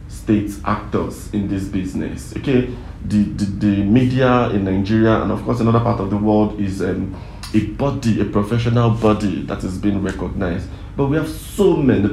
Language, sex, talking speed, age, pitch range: English, male, 180 wpm, 50-69, 105-125 Hz